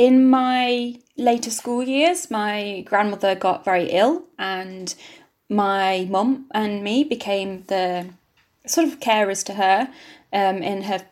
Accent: British